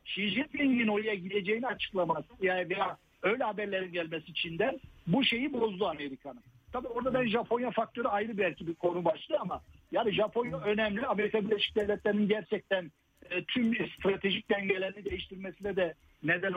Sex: male